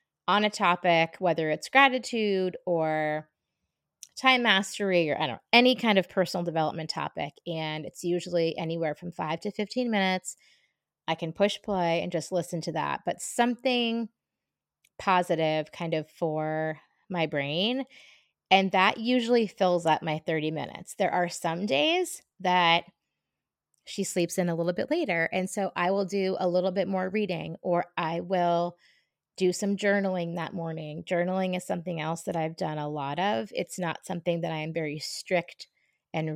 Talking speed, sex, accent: 170 wpm, female, American